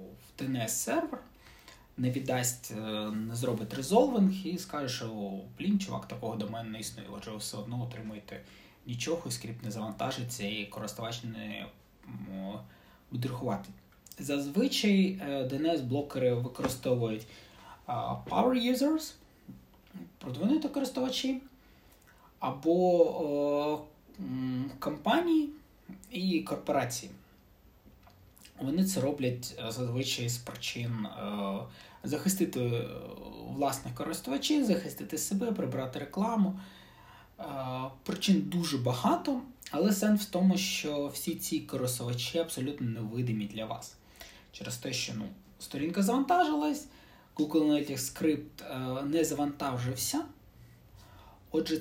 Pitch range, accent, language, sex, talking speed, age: 115-180 Hz, native, Ukrainian, male, 100 wpm, 20-39